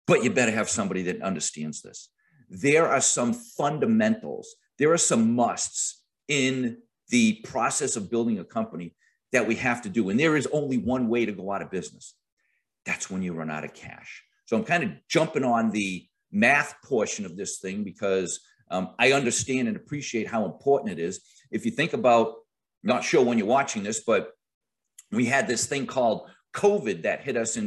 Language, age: English, 50-69